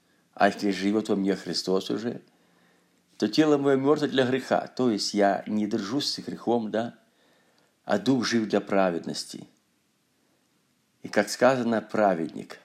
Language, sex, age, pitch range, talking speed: Russian, male, 50-69, 105-130 Hz, 140 wpm